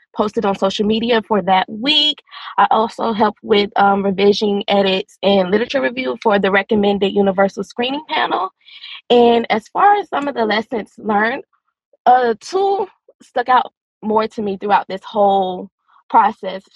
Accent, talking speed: American, 155 wpm